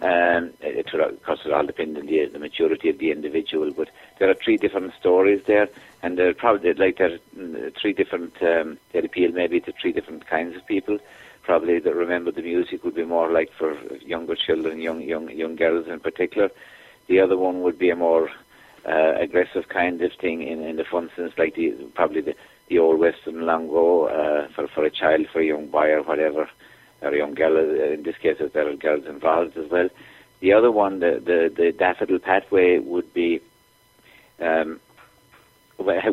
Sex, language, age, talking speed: male, English, 50-69, 195 wpm